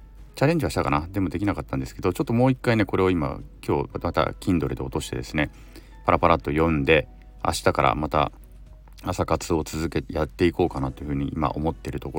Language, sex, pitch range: Japanese, male, 75-110 Hz